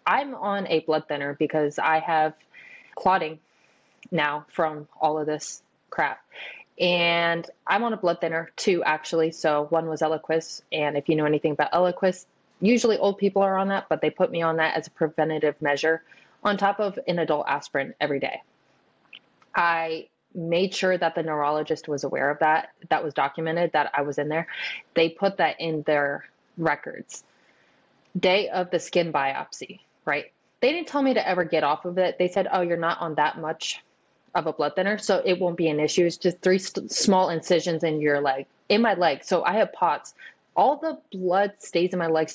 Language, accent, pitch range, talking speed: English, American, 155-185 Hz, 195 wpm